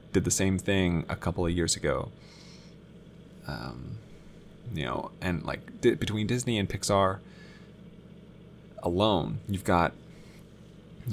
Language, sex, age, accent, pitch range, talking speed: English, male, 20-39, American, 95-130 Hz, 120 wpm